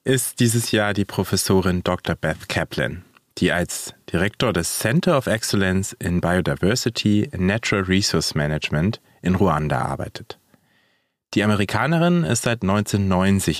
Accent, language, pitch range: German, German, 90-120 Hz